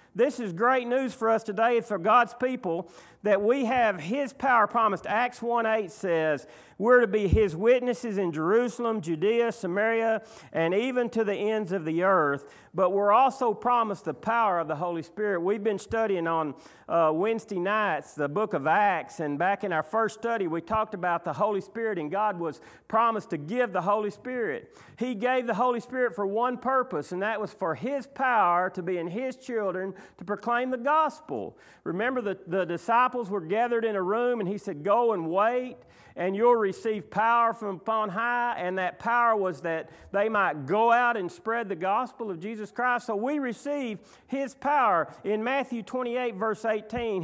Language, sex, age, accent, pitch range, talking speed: English, male, 40-59, American, 185-240 Hz, 190 wpm